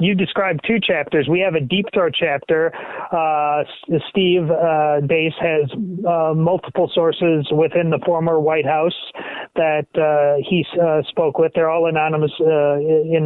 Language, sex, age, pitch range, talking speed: English, male, 30-49, 155-180 Hz, 150 wpm